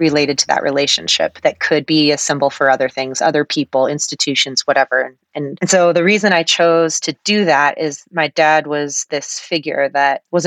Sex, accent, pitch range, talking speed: female, American, 145-170 Hz, 195 wpm